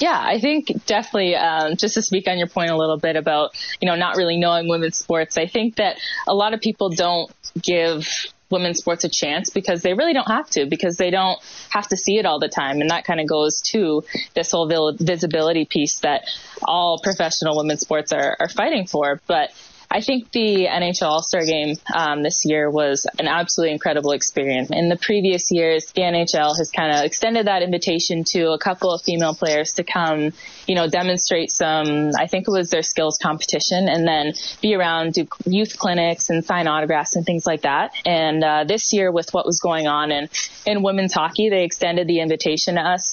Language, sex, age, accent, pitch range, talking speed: English, female, 20-39, American, 155-185 Hz, 210 wpm